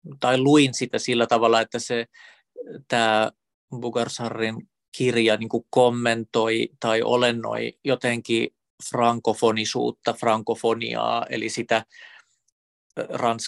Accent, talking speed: native, 85 wpm